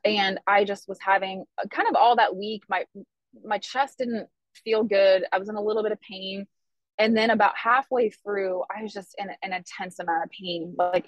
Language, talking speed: English, 210 wpm